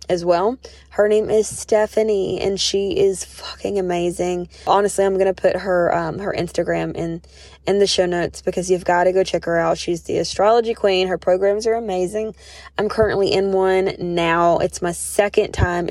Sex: female